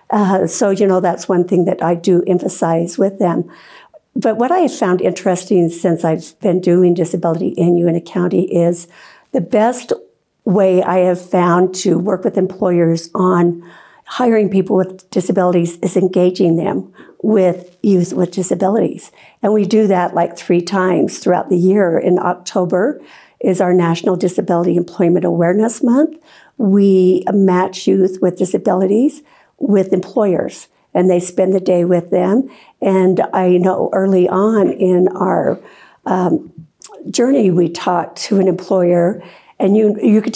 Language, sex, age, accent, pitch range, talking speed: English, female, 60-79, American, 175-200 Hz, 150 wpm